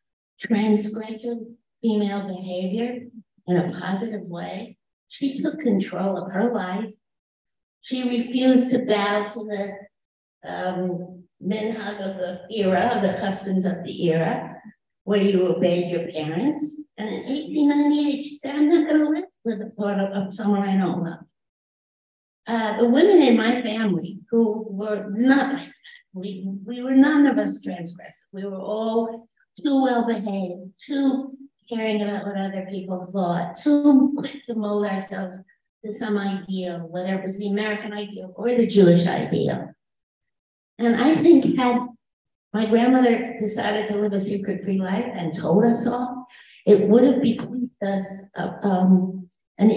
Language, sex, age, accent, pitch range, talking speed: English, female, 60-79, American, 195-240 Hz, 150 wpm